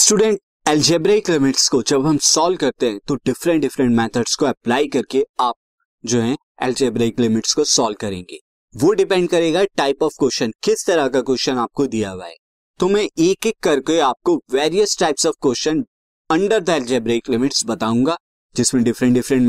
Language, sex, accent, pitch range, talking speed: Hindi, male, native, 125-190 Hz, 170 wpm